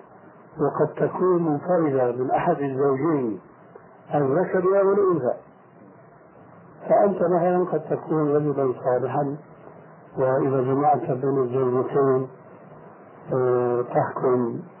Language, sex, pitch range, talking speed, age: Arabic, male, 130-165 Hz, 80 wpm, 60-79